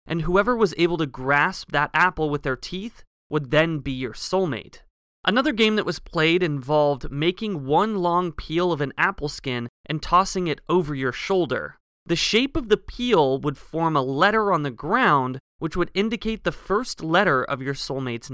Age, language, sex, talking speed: 30-49, English, male, 185 wpm